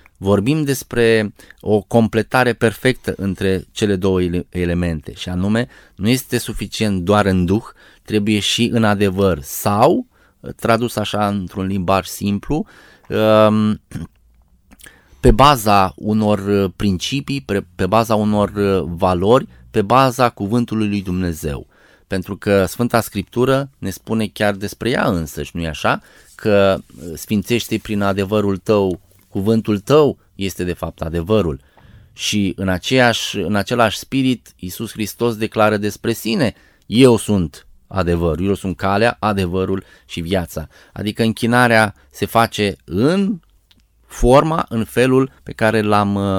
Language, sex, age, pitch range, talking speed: Romanian, male, 20-39, 95-115 Hz, 125 wpm